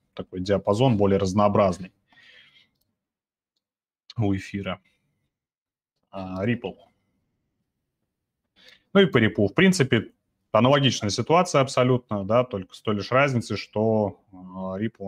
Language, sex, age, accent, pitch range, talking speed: Russian, male, 30-49, native, 95-120 Hz, 90 wpm